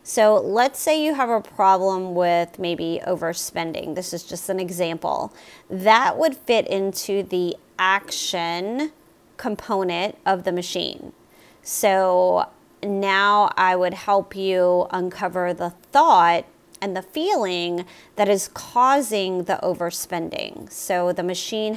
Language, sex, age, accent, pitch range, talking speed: English, female, 30-49, American, 180-225 Hz, 125 wpm